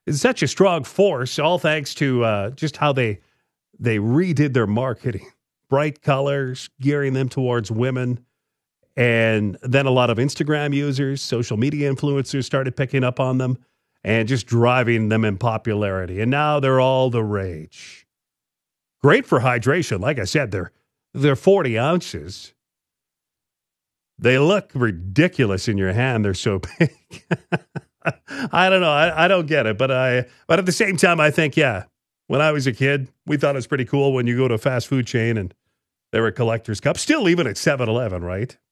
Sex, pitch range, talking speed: male, 110-140 Hz, 180 wpm